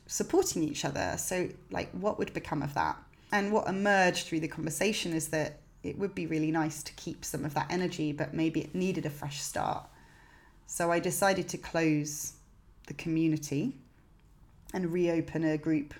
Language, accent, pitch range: English, British, 155-185 Hz